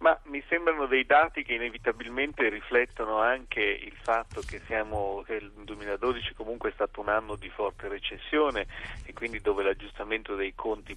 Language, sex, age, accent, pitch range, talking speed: Italian, male, 40-59, native, 105-125 Hz, 165 wpm